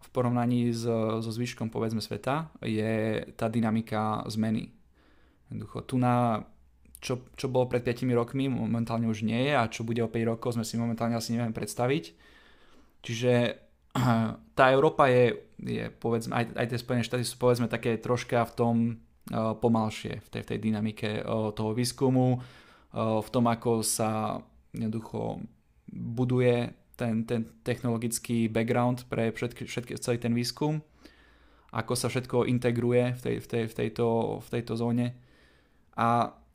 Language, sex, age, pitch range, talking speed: Slovak, male, 20-39, 115-125 Hz, 150 wpm